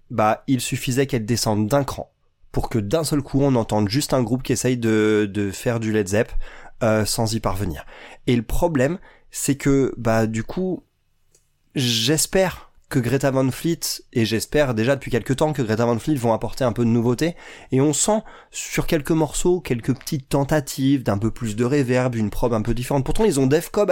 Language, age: French, 20-39